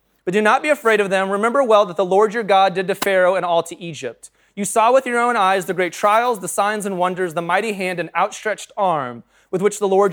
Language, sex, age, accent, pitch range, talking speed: English, male, 20-39, American, 160-210 Hz, 260 wpm